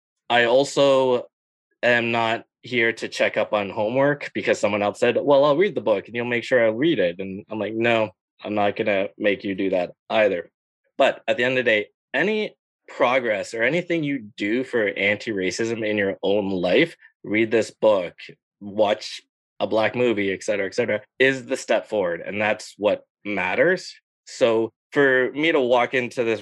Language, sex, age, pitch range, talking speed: English, male, 20-39, 105-135 Hz, 190 wpm